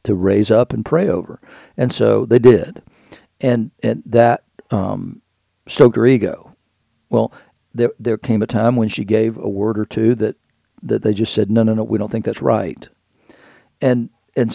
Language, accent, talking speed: English, American, 185 wpm